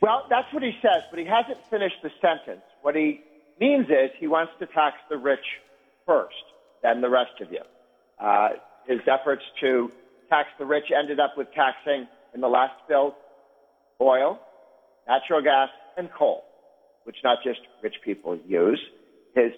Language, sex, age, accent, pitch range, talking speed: English, male, 50-69, American, 125-165 Hz, 165 wpm